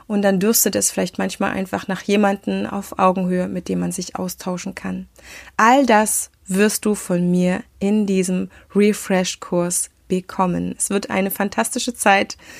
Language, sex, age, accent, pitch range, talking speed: German, female, 20-39, German, 185-225 Hz, 155 wpm